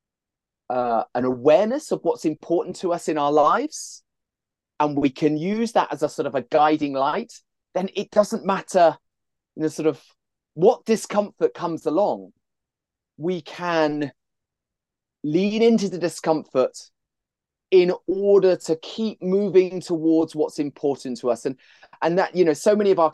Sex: male